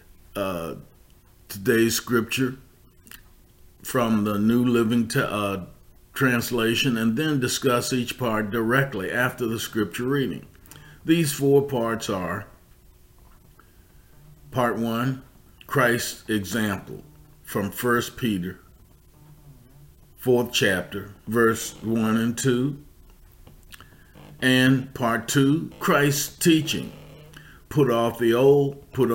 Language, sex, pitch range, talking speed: English, male, 110-135 Hz, 95 wpm